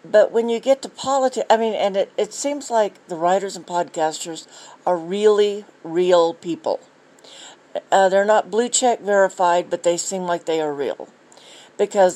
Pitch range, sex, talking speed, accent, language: 165-205 Hz, female, 175 wpm, American, English